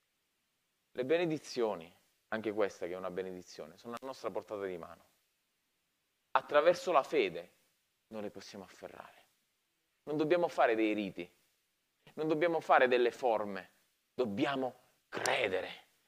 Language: Italian